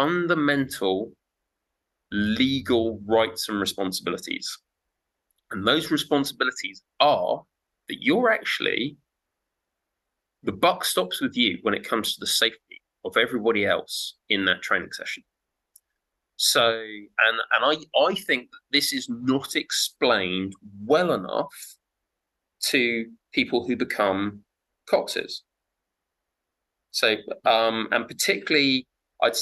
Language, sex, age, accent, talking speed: English, male, 20-39, British, 110 wpm